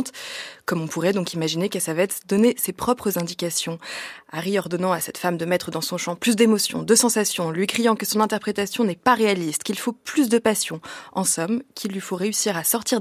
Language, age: French, 20-39